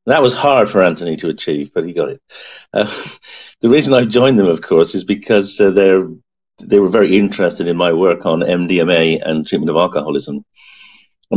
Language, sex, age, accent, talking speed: English, male, 50-69, British, 190 wpm